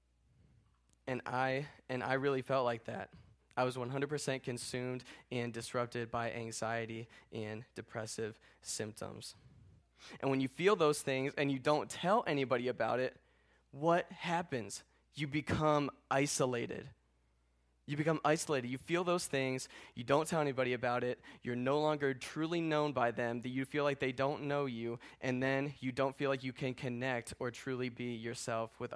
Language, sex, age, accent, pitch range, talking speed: English, male, 20-39, American, 120-145 Hz, 165 wpm